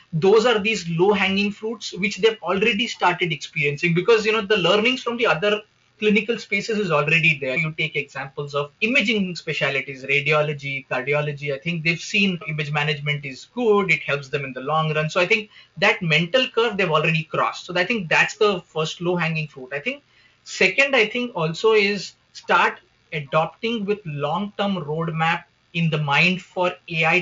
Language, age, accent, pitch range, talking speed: English, 20-39, Indian, 155-200 Hz, 175 wpm